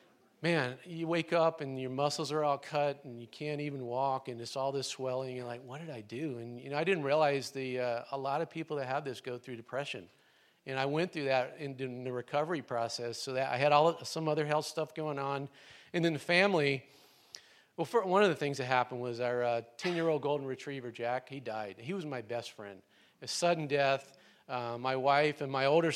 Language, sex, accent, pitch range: English, male, American, 130-160 Hz